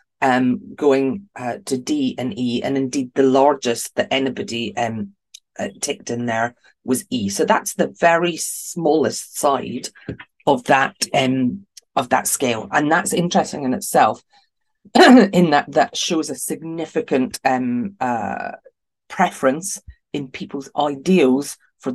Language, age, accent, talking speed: English, 30-49, British, 135 wpm